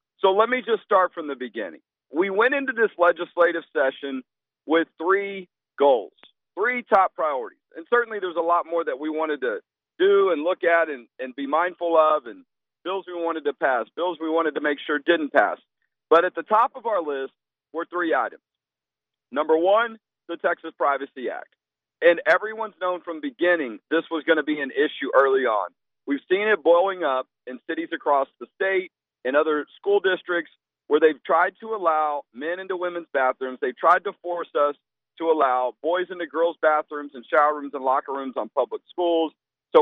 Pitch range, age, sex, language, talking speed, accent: 150-220 Hz, 40-59, male, English, 195 wpm, American